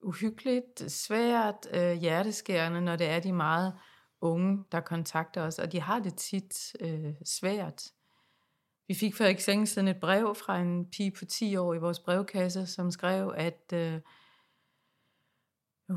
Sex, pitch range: female, 175-210 Hz